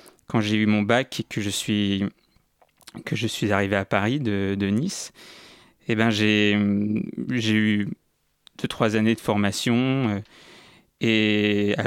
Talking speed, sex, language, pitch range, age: 125 wpm, male, French, 105-125 Hz, 20-39